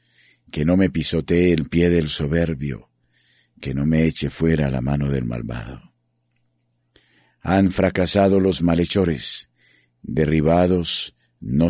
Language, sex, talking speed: Spanish, male, 120 wpm